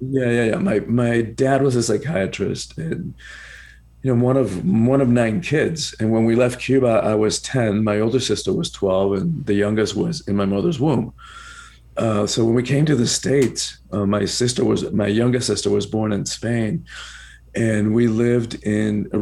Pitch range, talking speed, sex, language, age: 105-130 Hz, 195 wpm, male, English, 40-59